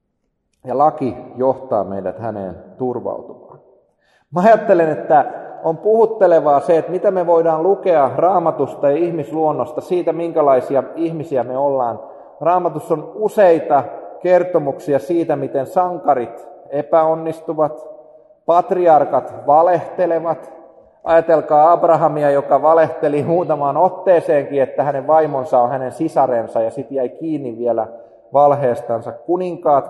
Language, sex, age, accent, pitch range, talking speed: Finnish, male, 30-49, native, 140-180 Hz, 105 wpm